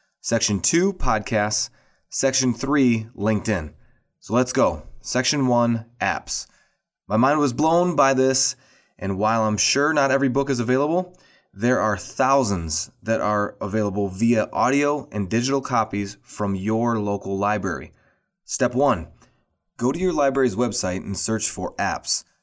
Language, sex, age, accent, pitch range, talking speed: English, male, 20-39, American, 100-130 Hz, 140 wpm